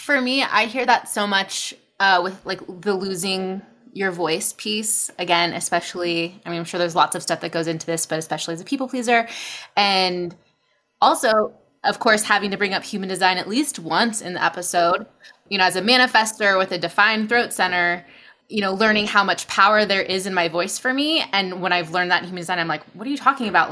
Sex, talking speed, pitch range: female, 225 wpm, 170-210 Hz